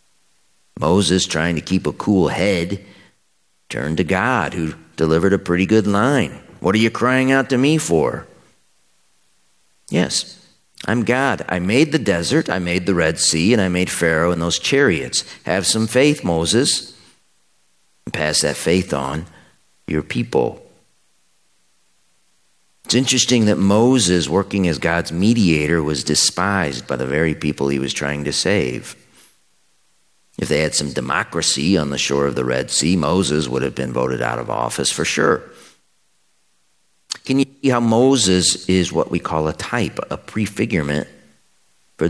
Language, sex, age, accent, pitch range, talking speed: English, male, 50-69, American, 70-105 Hz, 155 wpm